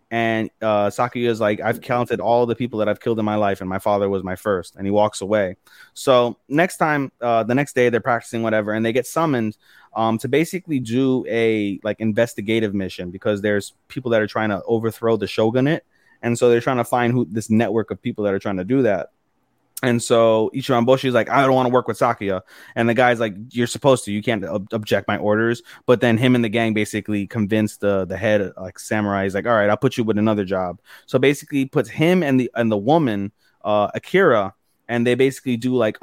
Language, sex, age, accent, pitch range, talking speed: English, male, 20-39, American, 105-125 Hz, 235 wpm